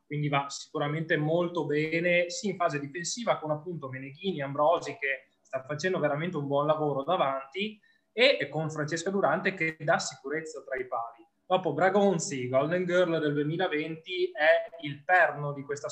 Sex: male